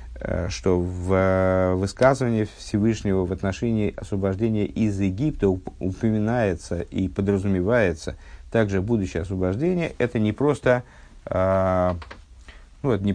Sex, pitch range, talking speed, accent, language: male, 90-120 Hz, 80 wpm, native, Russian